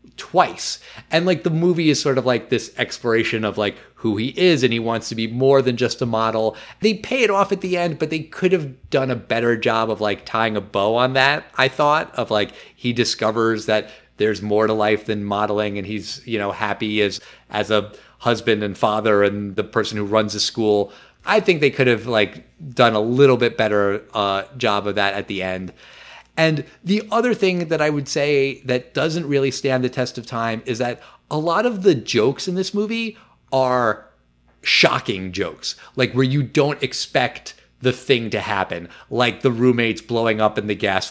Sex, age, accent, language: male, 30-49, American, English